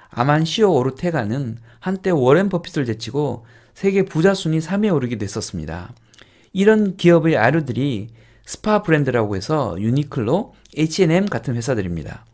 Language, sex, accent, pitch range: Korean, male, native, 120-190 Hz